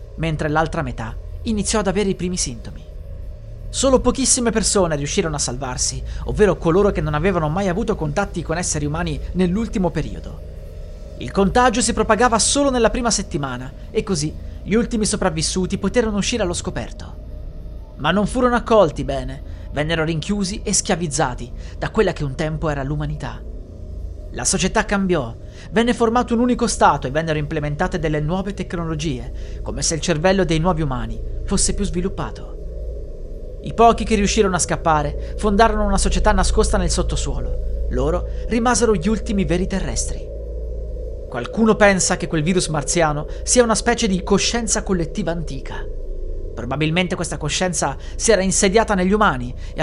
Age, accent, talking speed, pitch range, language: 30-49, native, 150 wpm, 130-205 Hz, Italian